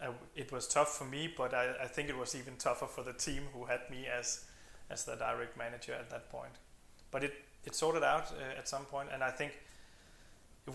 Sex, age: male, 20-39